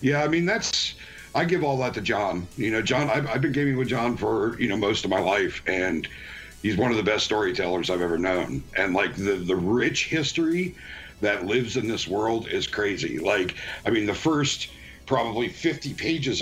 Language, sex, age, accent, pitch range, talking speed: English, male, 60-79, American, 110-145 Hz, 210 wpm